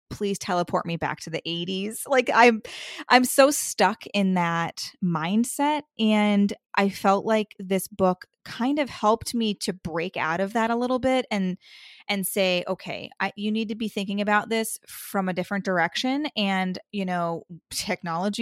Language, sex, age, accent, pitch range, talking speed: English, female, 20-39, American, 175-215 Hz, 175 wpm